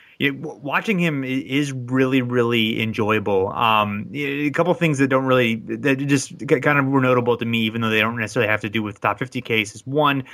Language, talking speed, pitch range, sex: English, 205 wpm, 110-130 Hz, male